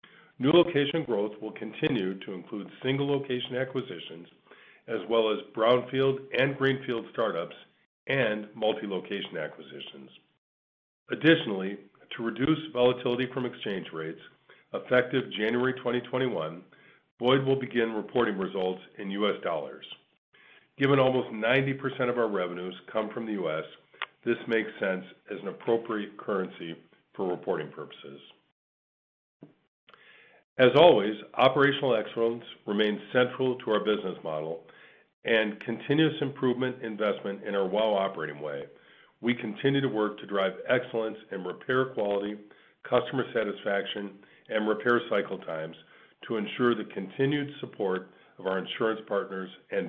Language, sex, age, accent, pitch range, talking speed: English, male, 50-69, American, 100-130 Hz, 125 wpm